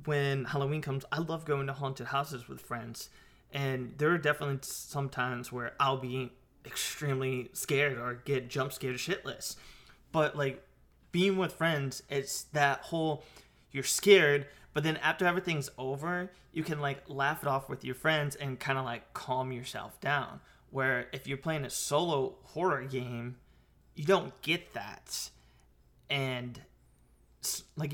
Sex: male